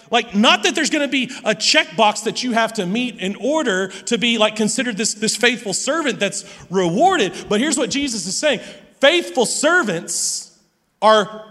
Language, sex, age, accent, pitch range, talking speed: English, male, 40-59, American, 195-245 Hz, 175 wpm